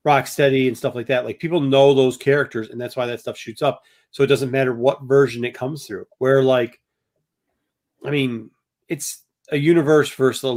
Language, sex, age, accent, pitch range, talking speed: English, male, 40-59, American, 130-160 Hz, 200 wpm